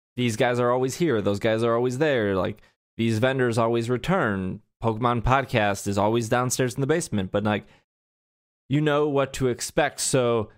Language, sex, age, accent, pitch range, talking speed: English, male, 20-39, American, 105-135 Hz, 175 wpm